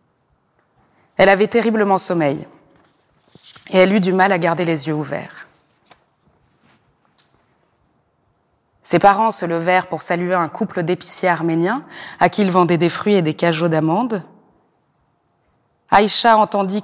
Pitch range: 175-215 Hz